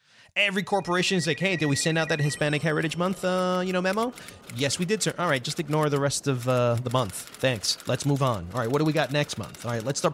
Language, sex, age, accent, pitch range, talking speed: English, male, 30-49, American, 135-195 Hz, 280 wpm